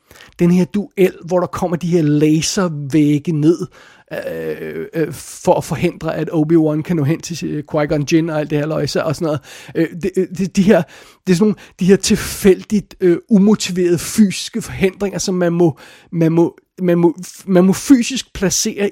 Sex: male